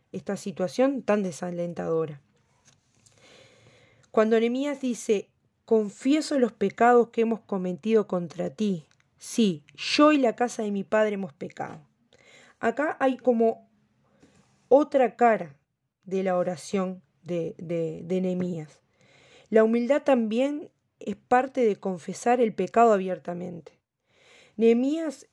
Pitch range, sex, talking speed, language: 185-245 Hz, female, 115 wpm, Spanish